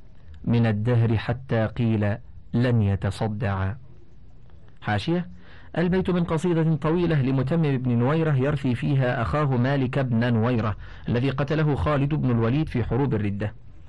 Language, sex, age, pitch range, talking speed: Arabic, male, 50-69, 110-140 Hz, 120 wpm